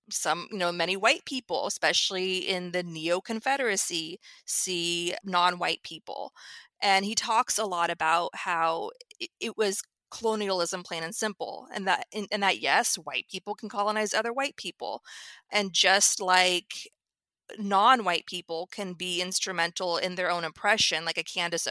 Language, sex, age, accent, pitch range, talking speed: English, female, 30-49, American, 180-225 Hz, 155 wpm